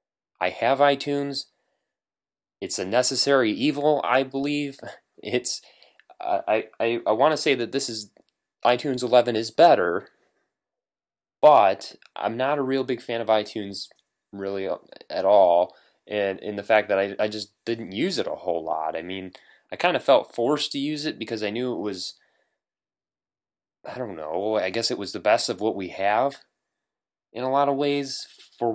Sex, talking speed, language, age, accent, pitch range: male, 175 wpm, English, 20-39, American, 95-130 Hz